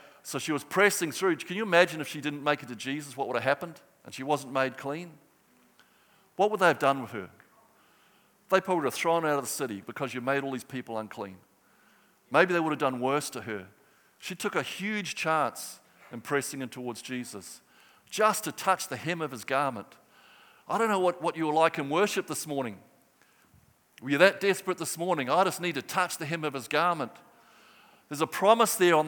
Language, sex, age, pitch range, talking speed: English, male, 50-69, 140-185 Hz, 220 wpm